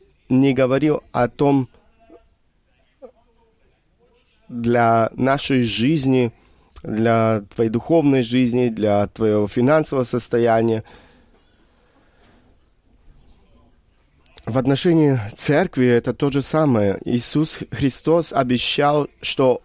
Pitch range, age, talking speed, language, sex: 110-135 Hz, 30-49, 80 wpm, Russian, male